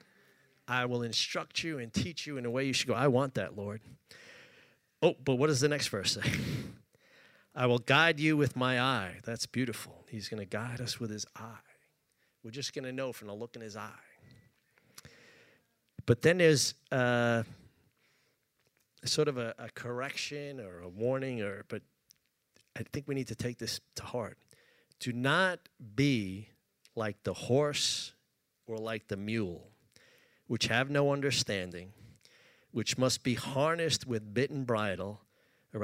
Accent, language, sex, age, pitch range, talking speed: American, English, male, 40-59, 110-140 Hz, 165 wpm